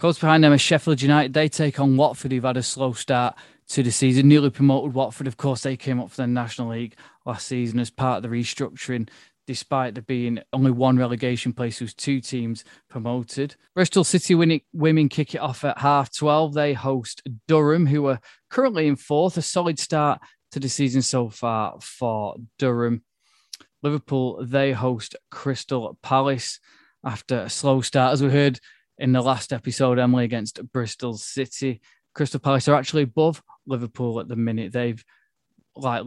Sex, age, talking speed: male, 20-39, 175 wpm